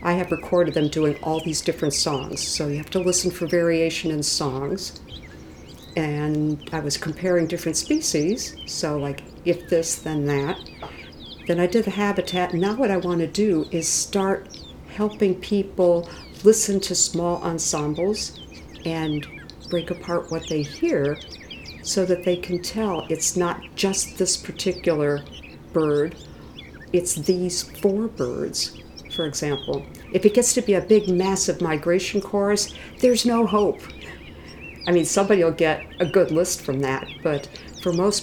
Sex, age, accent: female, 50-69, American